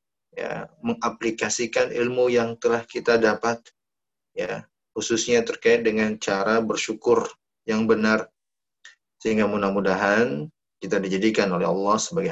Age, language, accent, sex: 20-39, Indonesian, native, male